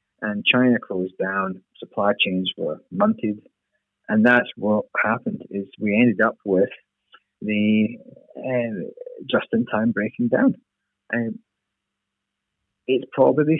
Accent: British